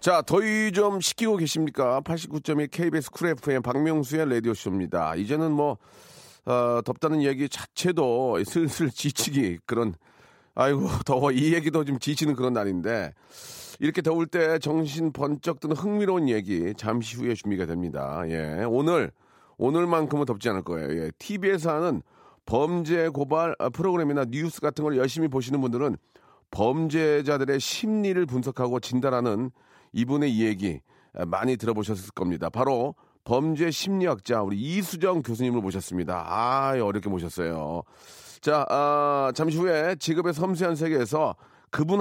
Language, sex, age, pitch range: Korean, male, 40-59, 115-160 Hz